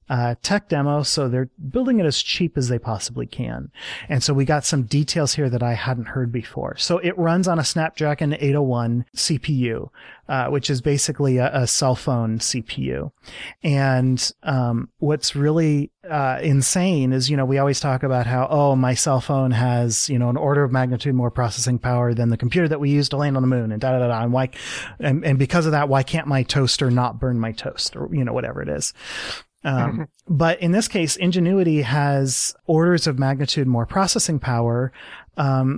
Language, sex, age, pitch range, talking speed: English, male, 30-49, 125-150 Hz, 205 wpm